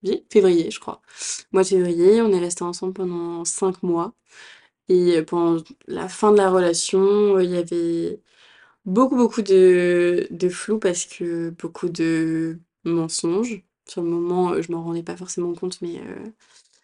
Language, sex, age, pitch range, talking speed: French, female, 20-39, 175-200 Hz, 155 wpm